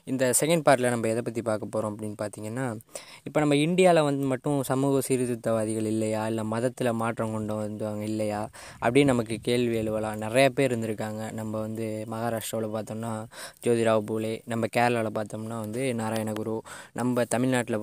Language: Tamil